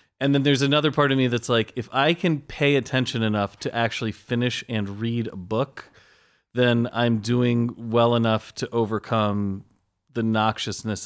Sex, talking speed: male, 170 wpm